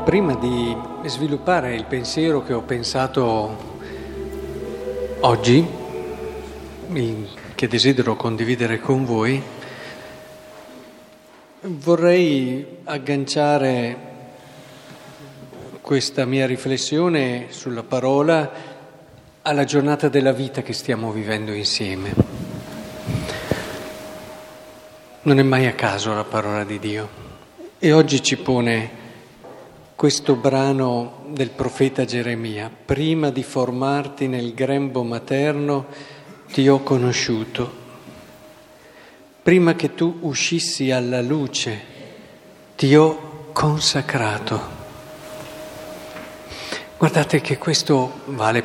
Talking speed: 85 wpm